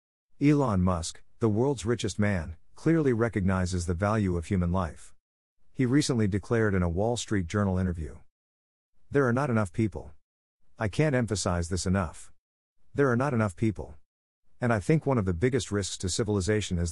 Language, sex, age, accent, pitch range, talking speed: English, male, 50-69, American, 90-115 Hz, 170 wpm